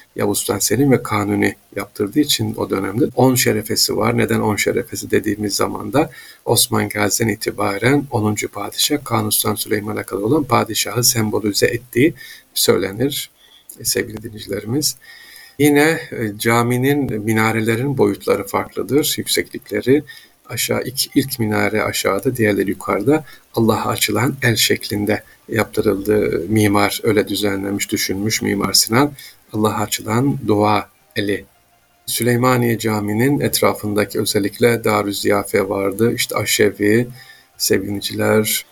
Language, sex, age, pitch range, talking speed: Turkish, male, 50-69, 105-125 Hz, 110 wpm